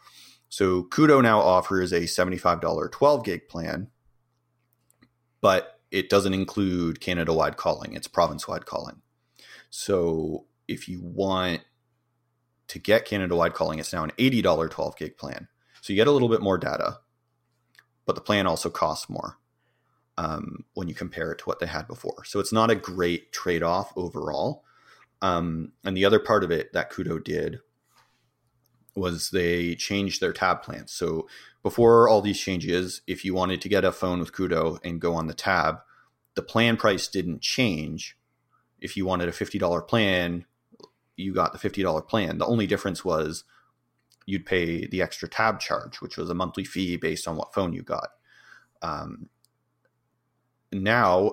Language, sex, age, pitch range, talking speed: English, male, 30-49, 85-105 Hz, 165 wpm